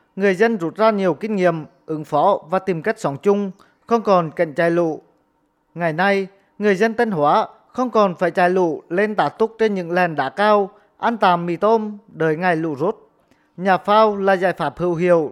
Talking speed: 210 wpm